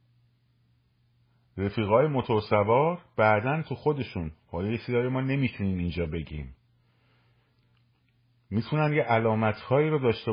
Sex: male